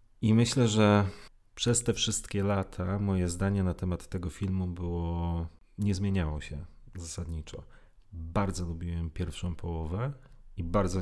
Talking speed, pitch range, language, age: 125 wpm, 85-105 Hz, Polish, 30-49